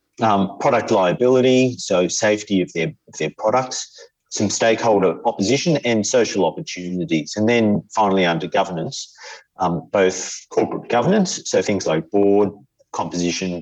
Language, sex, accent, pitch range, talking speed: English, male, Australian, 90-125 Hz, 130 wpm